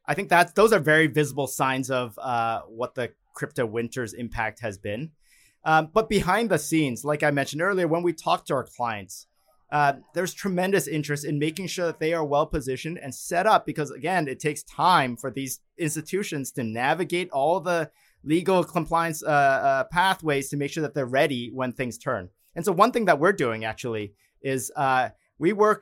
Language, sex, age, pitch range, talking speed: English, male, 30-49, 130-175 Hz, 200 wpm